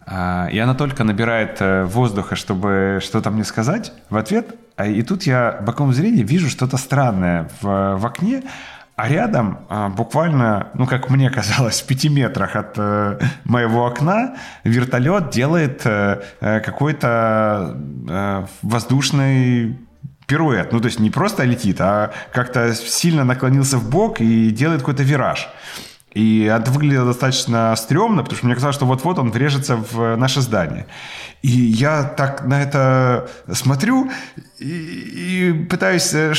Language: Ukrainian